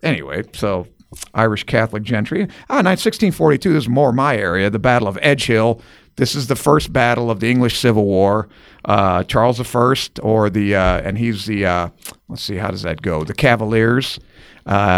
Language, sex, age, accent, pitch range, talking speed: English, male, 50-69, American, 95-125 Hz, 190 wpm